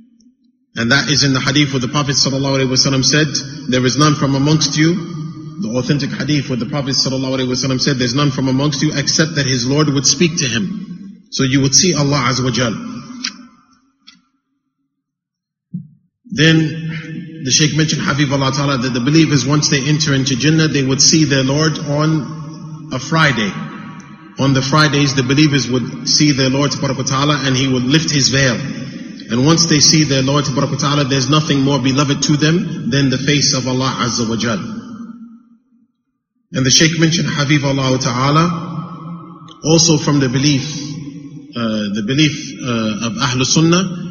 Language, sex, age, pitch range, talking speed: English, male, 30-49, 135-165 Hz, 170 wpm